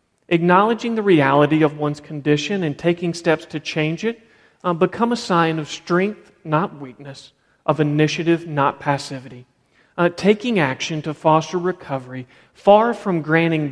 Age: 40-59